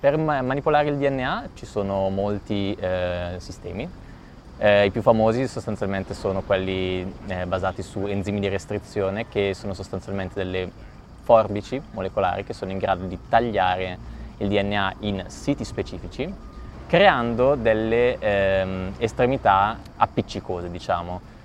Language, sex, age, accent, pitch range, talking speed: Italian, male, 20-39, native, 95-115 Hz, 125 wpm